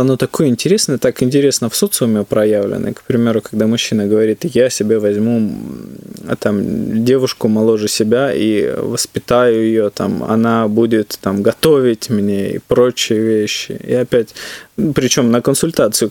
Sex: male